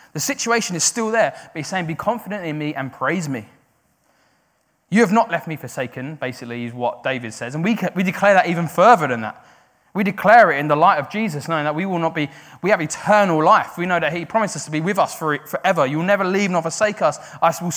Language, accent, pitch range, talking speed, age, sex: English, British, 160-230 Hz, 245 wpm, 20-39, male